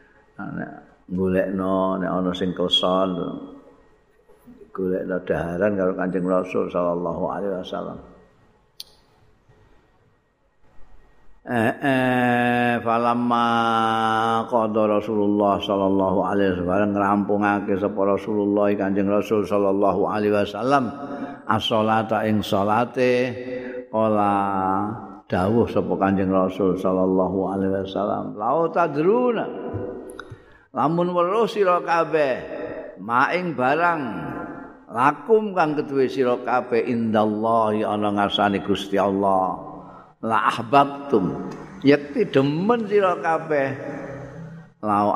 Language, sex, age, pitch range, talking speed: Indonesian, male, 50-69, 95-125 Hz, 75 wpm